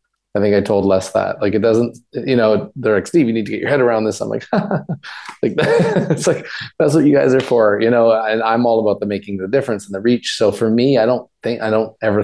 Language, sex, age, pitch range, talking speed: English, male, 30-49, 95-110 Hz, 270 wpm